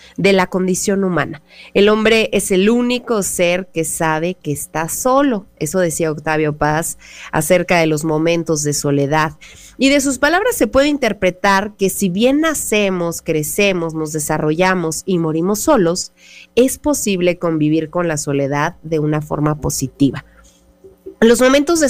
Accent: Mexican